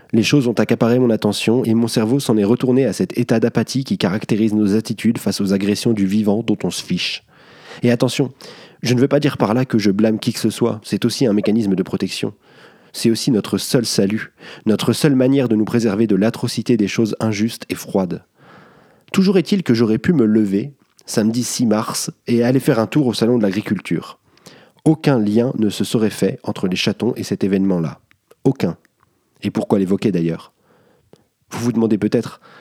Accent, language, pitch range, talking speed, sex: French, French, 105-125 Hz, 200 wpm, male